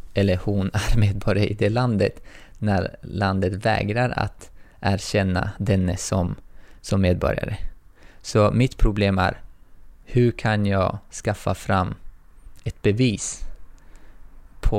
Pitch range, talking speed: 90-110 Hz, 115 wpm